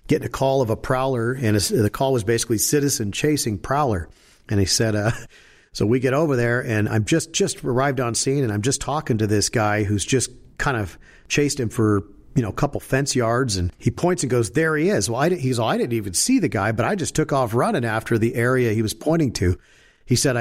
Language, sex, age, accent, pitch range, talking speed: English, male, 50-69, American, 110-135 Hz, 250 wpm